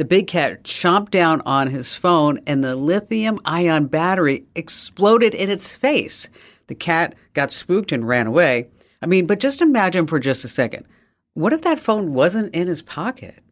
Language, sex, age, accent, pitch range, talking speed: English, female, 50-69, American, 150-195 Hz, 180 wpm